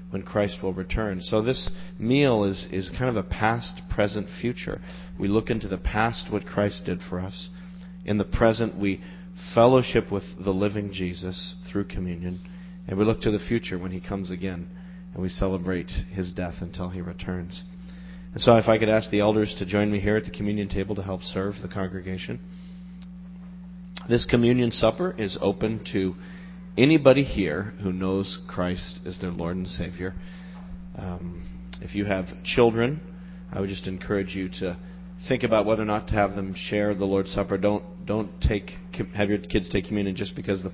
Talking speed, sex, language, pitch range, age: 185 wpm, male, English, 90-125 Hz, 40-59